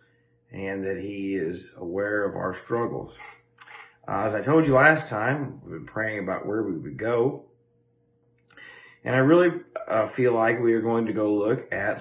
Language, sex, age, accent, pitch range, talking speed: English, male, 40-59, American, 110-130 Hz, 180 wpm